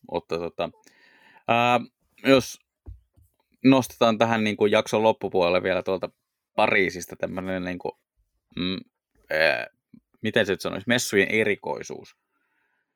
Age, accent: 20-39, native